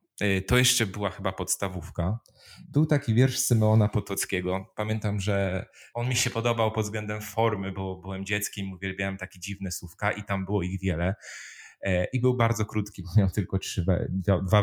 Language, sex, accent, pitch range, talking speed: Polish, male, native, 95-125 Hz, 165 wpm